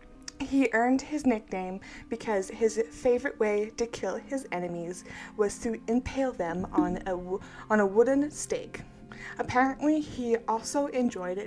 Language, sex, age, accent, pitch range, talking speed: English, female, 20-39, American, 195-250 Hz, 140 wpm